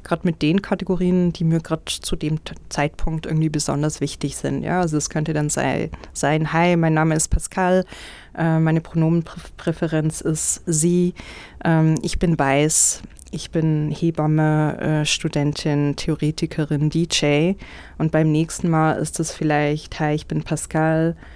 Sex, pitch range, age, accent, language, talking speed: female, 155-175 Hz, 20-39, German, German, 145 wpm